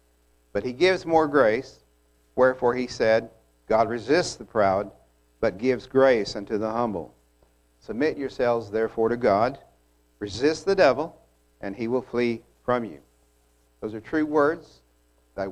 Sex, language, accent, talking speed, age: male, English, American, 145 wpm, 60-79